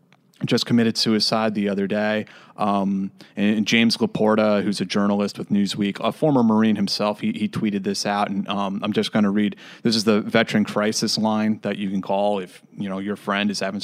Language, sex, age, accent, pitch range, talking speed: English, male, 30-49, American, 100-120 Hz, 215 wpm